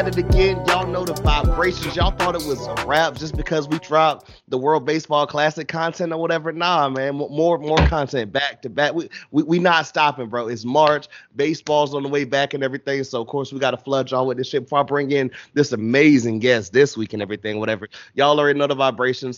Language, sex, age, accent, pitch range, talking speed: English, male, 30-49, American, 120-145 Hz, 225 wpm